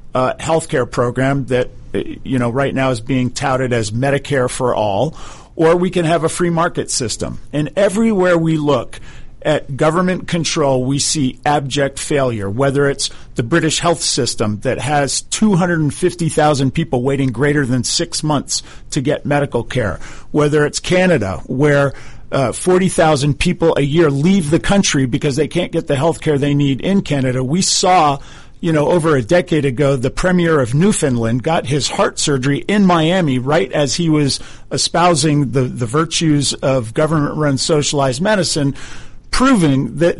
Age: 50-69